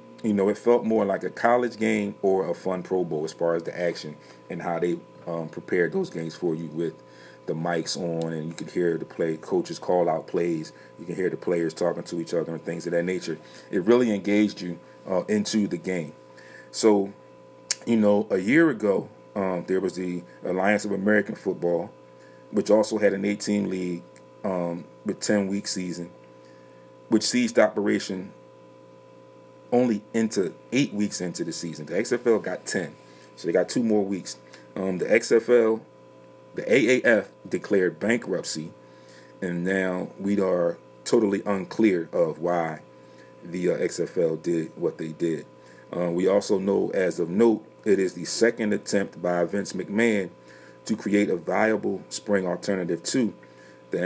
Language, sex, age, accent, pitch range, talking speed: English, male, 30-49, American, 65-100 Hz, 170 wpm